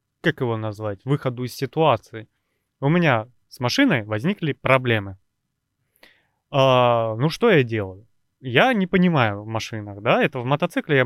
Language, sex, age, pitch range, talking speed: Russian, male, 20-39, 120-170 Hz, 145 wpm